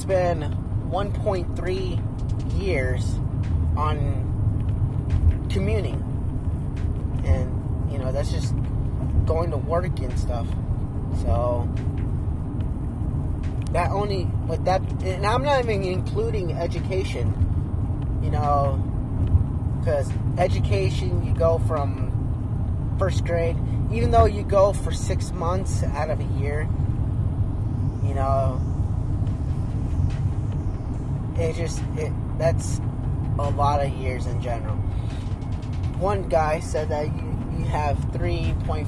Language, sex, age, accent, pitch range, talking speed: English, male, 20-39, American, 95-115 Hz, 105 wpm